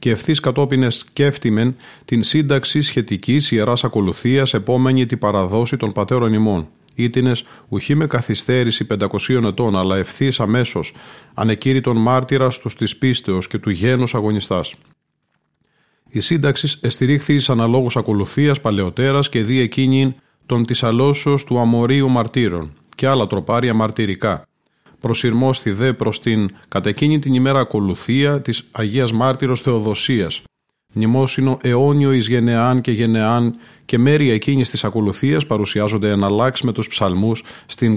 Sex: male